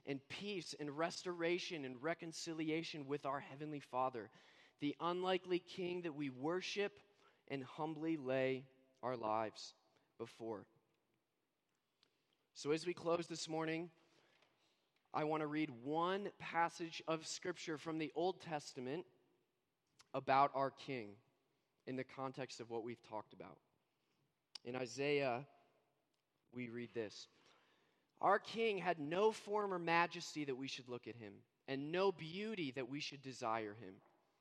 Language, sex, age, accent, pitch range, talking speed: English, male, 20-39, American, 135-175 Hz, 135 wpm